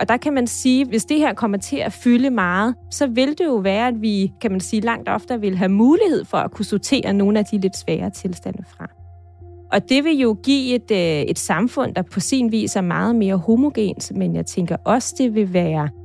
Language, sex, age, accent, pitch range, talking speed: Danish, female, 30-49, native, 185-255 Hz, 240 wpm